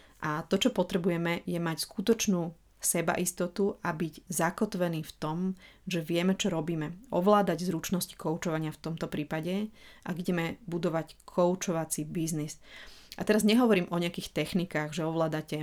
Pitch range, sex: 165-195 Hz, female